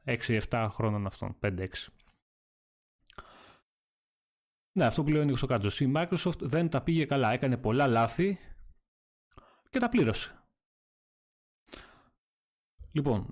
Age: 30-49